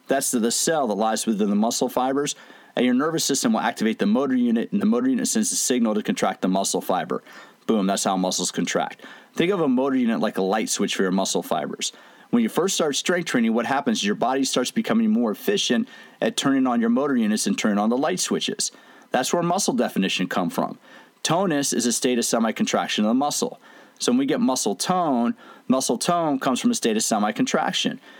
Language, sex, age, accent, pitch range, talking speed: English, male, 40-59, American, 155-245 Hz, 225 wpm